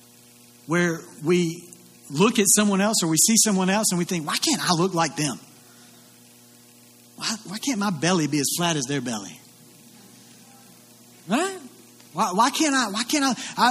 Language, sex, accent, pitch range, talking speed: English, male, American, 145-225 Hz, 175 wpm